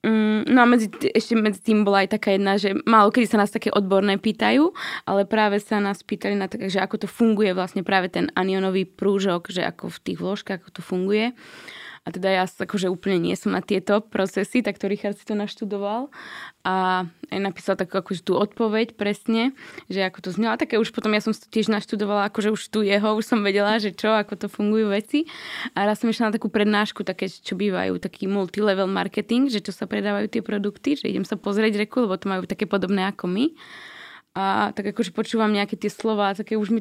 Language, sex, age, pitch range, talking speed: Slovak, female, 20-39, 195-225 Hz, 215 wpm